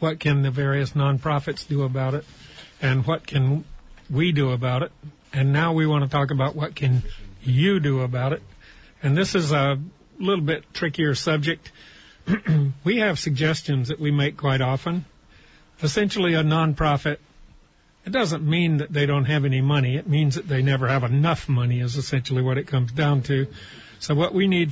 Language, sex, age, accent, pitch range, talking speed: English, male, 50-69, American, 140-160 Hz, 180 wpm